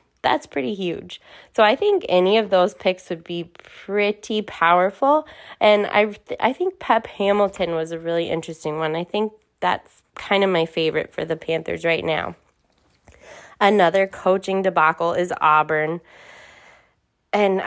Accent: American